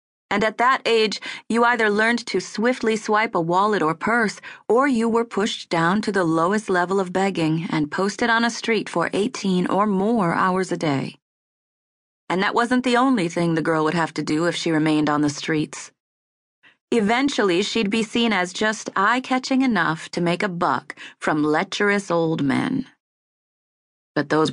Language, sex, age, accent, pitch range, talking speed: English, female, 30-49, American, 160-220 Hz, 180 wpm